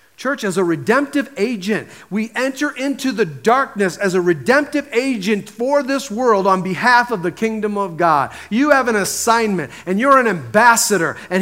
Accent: American